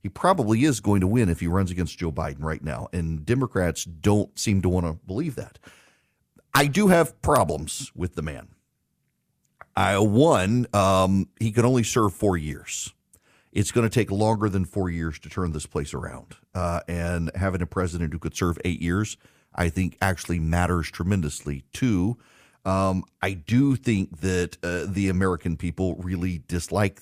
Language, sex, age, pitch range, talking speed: English, male, 40-59, 85-105 Hz, 175 wpm